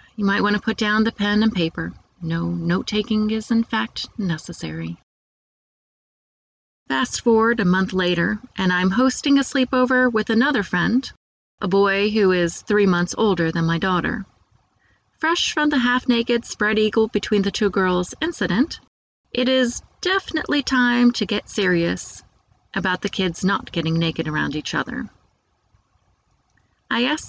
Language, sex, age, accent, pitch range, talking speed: English, female, 30-49, American, 170-235 Hz, 140 wpm